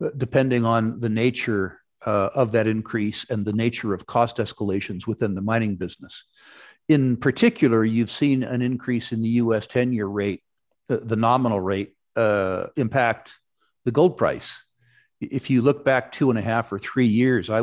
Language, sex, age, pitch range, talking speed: English, male, 50-69, 105-125 Hz, 170 wpm